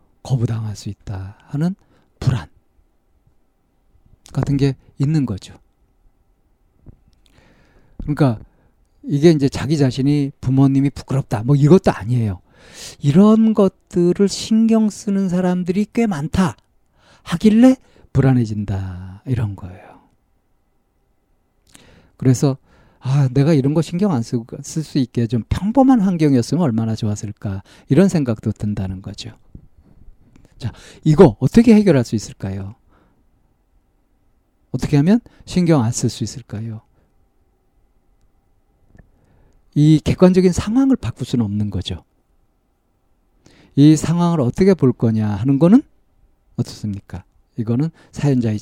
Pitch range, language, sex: 100-155 Hz, Korean, male